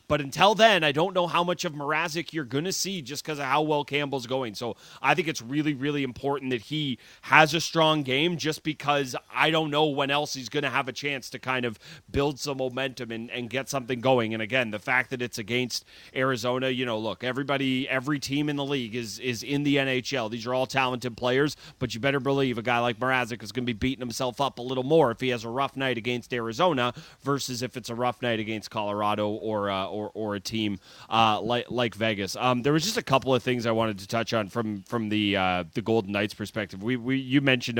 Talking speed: 245 wpm